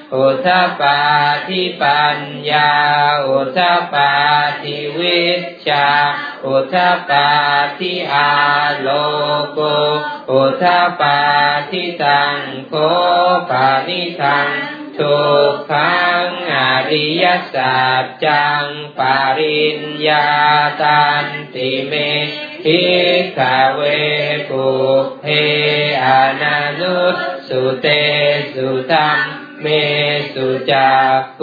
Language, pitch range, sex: Thai, 145-175 Hz, male